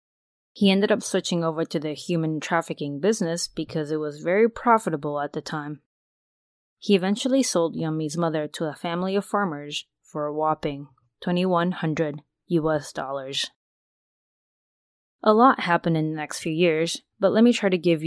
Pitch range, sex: 150-190 Hz, female